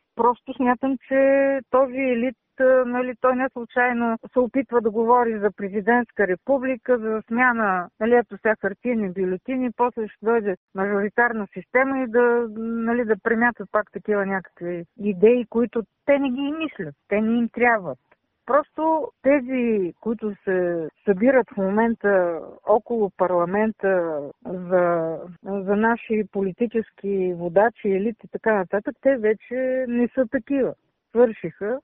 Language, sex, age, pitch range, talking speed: Bulgarian, female, 50-69, 195-240 Hz, 130 wpm